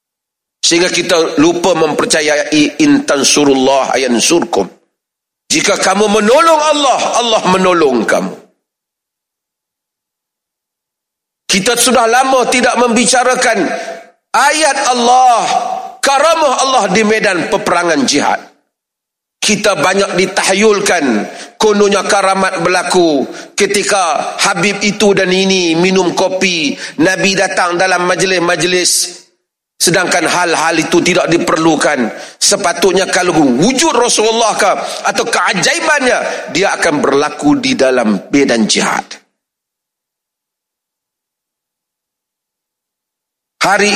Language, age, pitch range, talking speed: Malay, 40-59, 185-275 Hz, 85 wpm